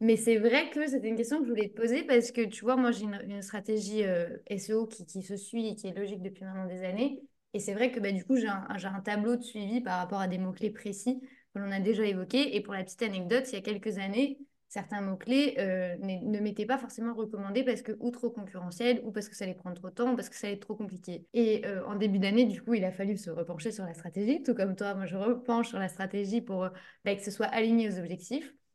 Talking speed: 280 wpm